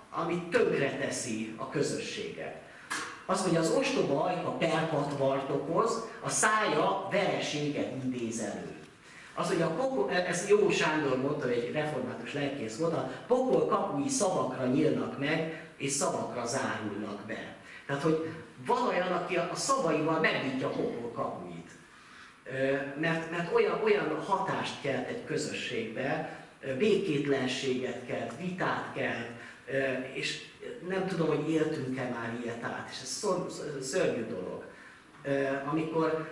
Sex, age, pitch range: male, 40-59, 130-175 Hz